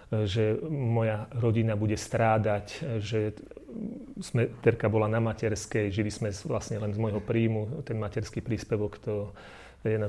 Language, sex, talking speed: Slovak, male, 135 wpm